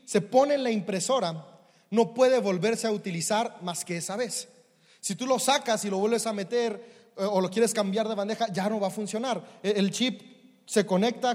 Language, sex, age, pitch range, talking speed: Spanish, male, 30-49, 200-235 Hz, 200 wpm